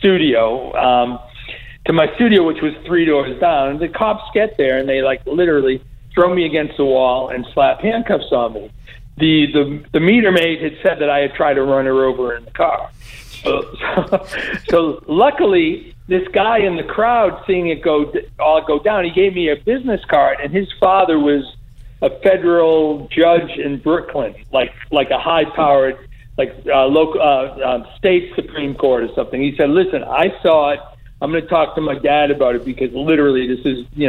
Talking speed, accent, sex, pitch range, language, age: 195 wpm, American, male, 130-175 Hz, English, 60-79